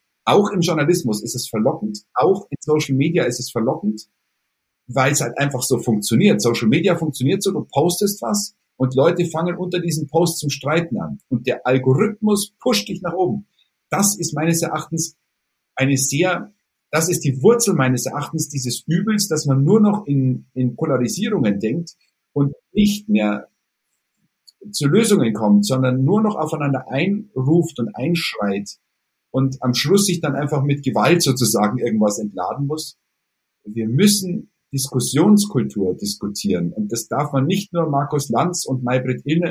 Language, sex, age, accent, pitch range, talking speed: German, male, 50-69, German, 125-170 Hz, 160 wpm